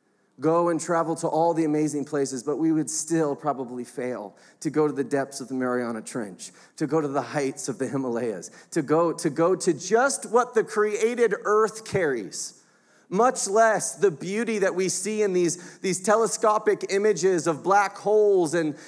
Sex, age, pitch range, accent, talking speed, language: male, 30-49, 175-240 Hz, American, 185 wpm, English